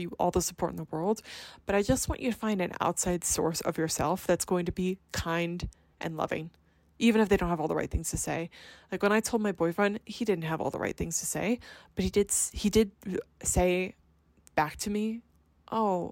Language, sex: English, female